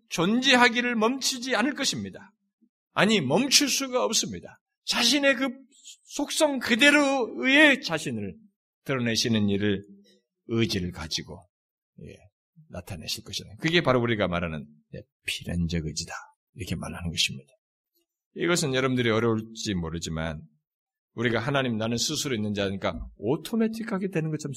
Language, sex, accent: Korean, male, native